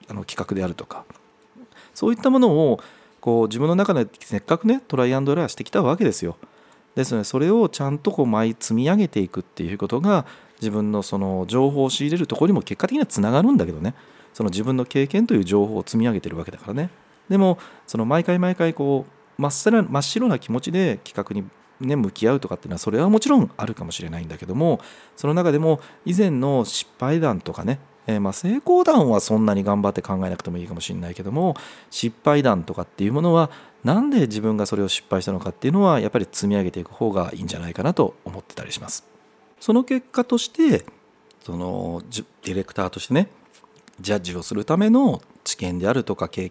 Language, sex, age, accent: Japanese, male, 40-59, native